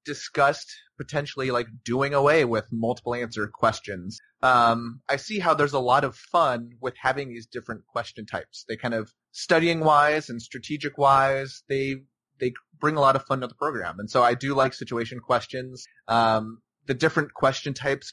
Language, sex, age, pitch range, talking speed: English, male, 30-49, 120-145 Hz, 180 wpm